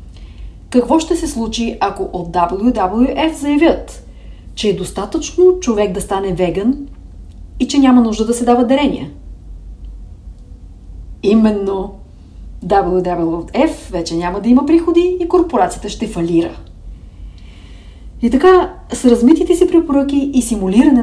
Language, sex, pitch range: English, female, 170-270 Hz